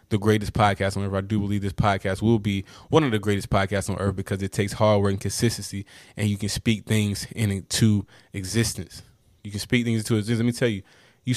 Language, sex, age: English, male, 20-39